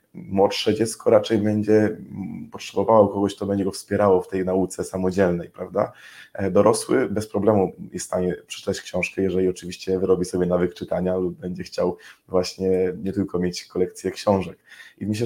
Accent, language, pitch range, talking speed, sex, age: native, Polish, 95-105 Hz, 155 wpm, male, 20-39